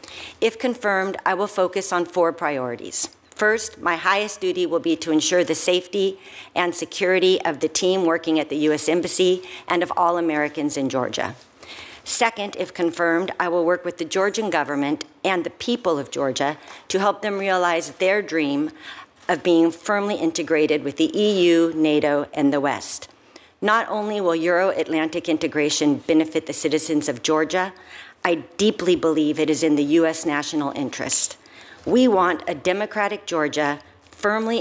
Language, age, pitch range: English, 50-69, 150-190 Hz